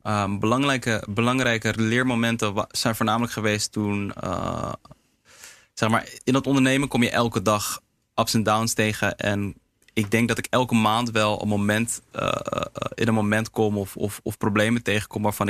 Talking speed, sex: 175 wpm, male